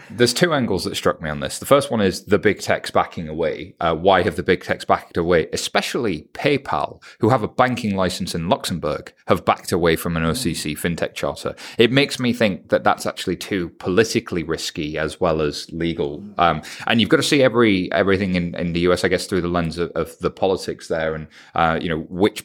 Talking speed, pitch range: 220 wpm, 85-120 Hz